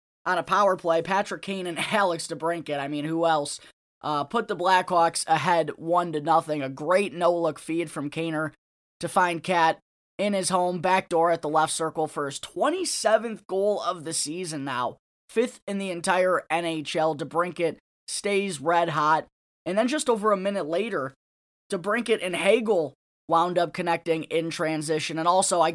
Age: 10-29